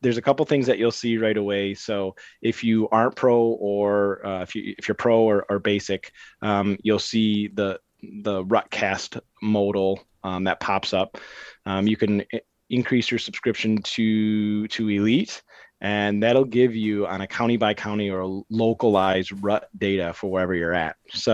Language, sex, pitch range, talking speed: English, male, 100-115 Hz, 180 wpm